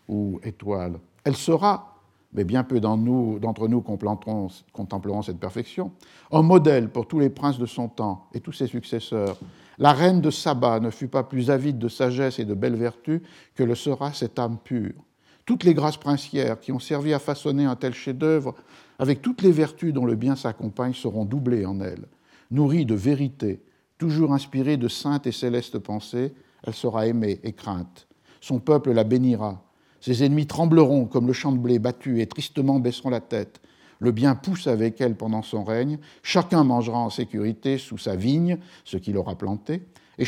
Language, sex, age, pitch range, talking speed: French, male, 50-69, 105-140 Hz, 185 wpm